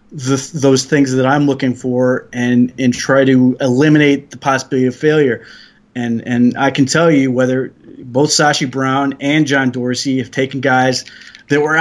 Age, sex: 30-49, male